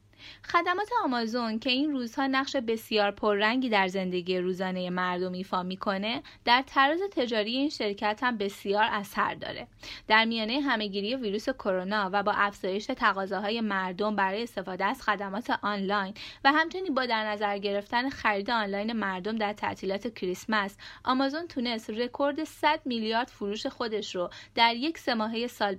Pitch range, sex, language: 200-255 Hz, female, Persian